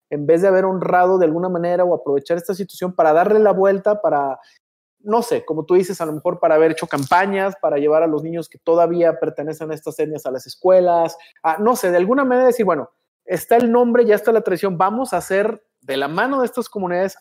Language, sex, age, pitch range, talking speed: Spanish, male, 40-59, 170-225 Hz, 235 wpm